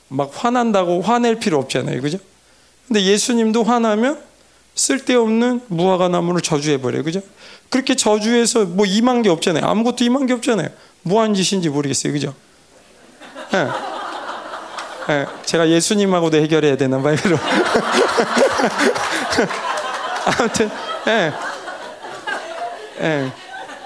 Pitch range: 160-230 Hz